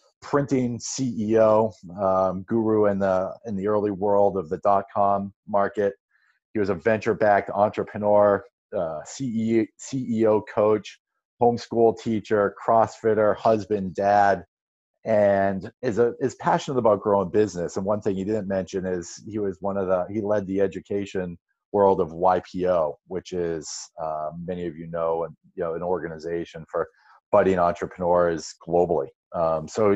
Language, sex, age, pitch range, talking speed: English, male, 40-59, 95-110 Hz, 150 wpm